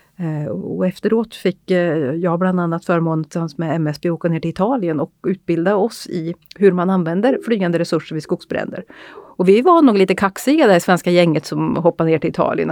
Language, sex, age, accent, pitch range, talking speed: Swedish, female, 30-49, native, 165-195 Hz, 185 wpm